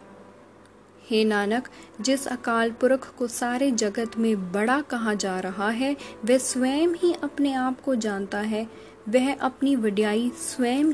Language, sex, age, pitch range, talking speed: Hindi, female, 10-29, 215-275 Hz, 145 wpm